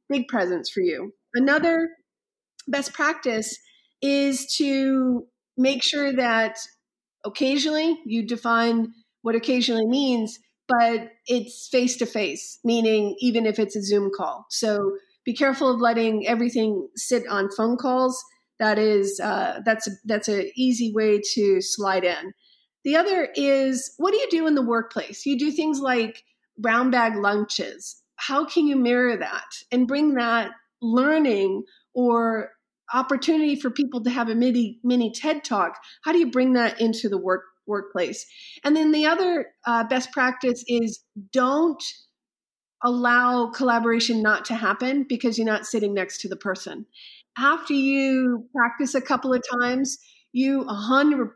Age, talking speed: 40-59, 150 wpm